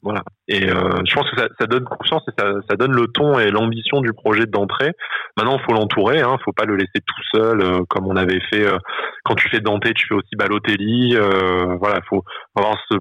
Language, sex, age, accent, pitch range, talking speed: French, male, 20-39, French, 95-110 Hz, 250 wpm